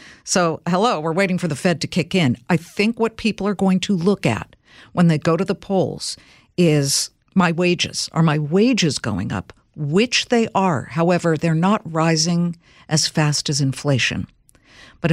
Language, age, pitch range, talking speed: English, 50-69, 150-200 Hz, 180 wpm